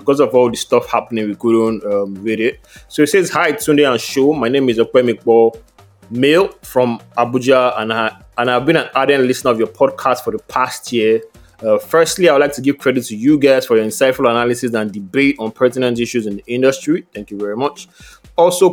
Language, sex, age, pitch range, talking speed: English, male, 20-39, 115-150 Hz, 225 wpm